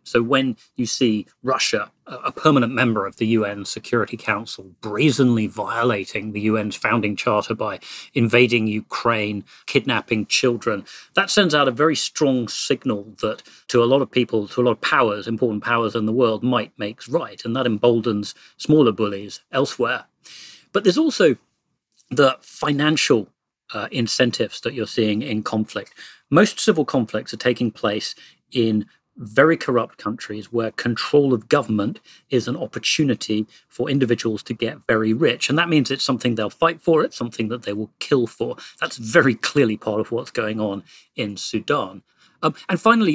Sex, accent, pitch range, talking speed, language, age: male, British, 110-130 Hz, 165 wpm, English, 40-59